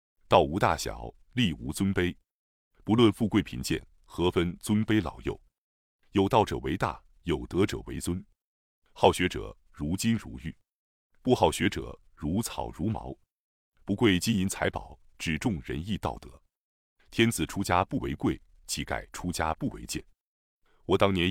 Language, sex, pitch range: Chinese, male, 80-105 Hz